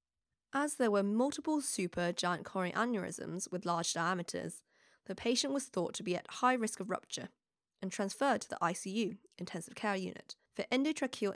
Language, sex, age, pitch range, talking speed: English, female, 20-39, 175-235 Hz, 165 wpm